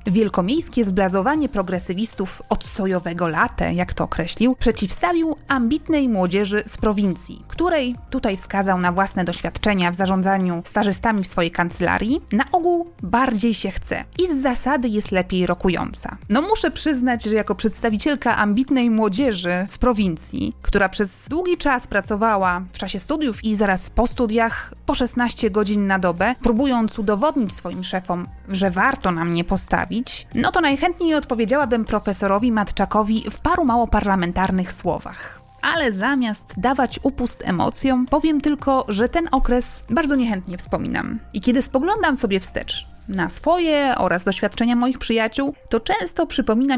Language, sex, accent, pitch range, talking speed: Polish, female, native, 195-260 Hz, 140 wpm